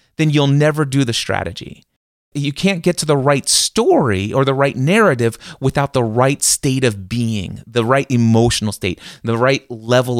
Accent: American